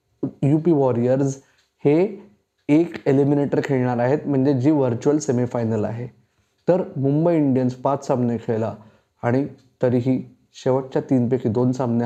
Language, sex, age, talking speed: Marathi, male, 20-39, 115 wpm